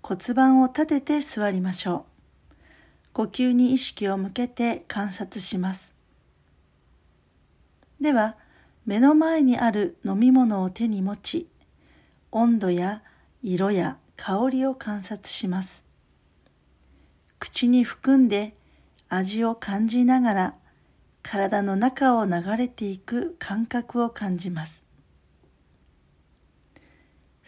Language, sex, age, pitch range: Japanese, female, 40-59, 180-245 Hz